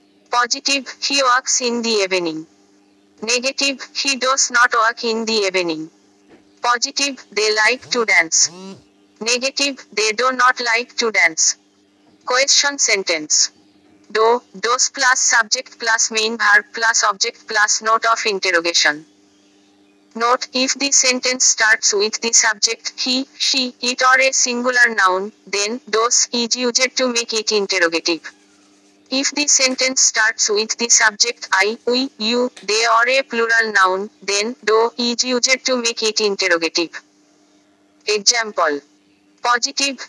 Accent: native